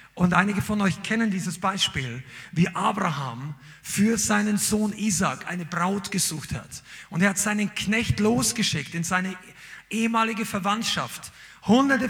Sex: male